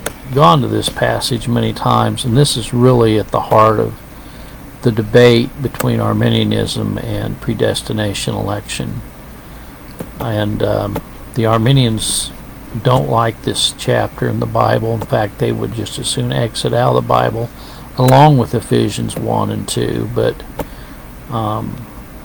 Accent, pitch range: American, 110-135 Hz